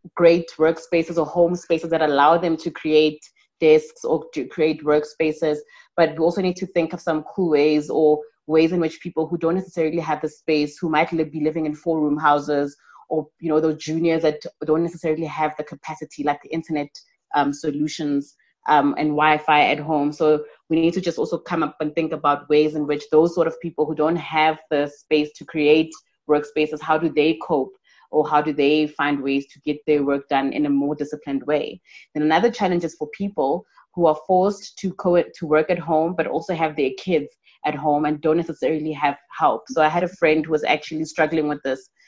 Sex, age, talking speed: female, 20-39, 210 wpm